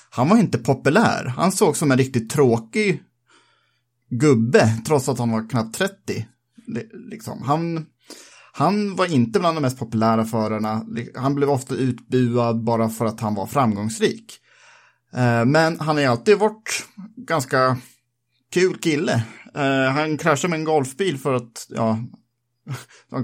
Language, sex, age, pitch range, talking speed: Swedish, male, 30-49, 115-145 Hz, 135 wpm